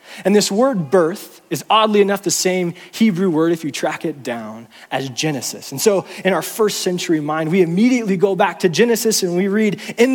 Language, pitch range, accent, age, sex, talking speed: English, 150-205 Hz, American, 20-39, male, 205 wpm